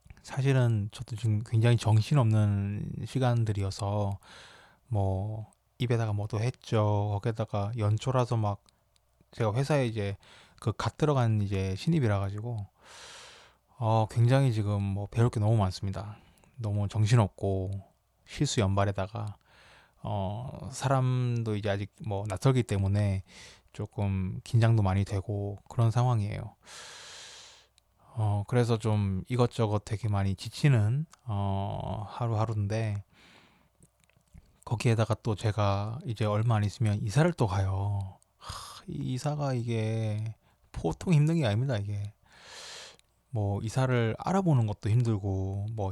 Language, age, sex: Korean, 20-39, male